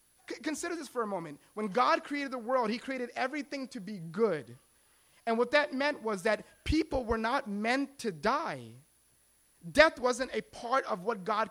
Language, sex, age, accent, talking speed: English, male, 30-49, American, 180 wpm